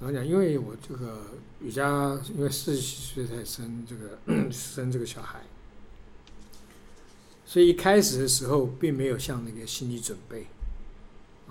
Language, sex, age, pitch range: Chinese, male, 60-79, 120-145 Hz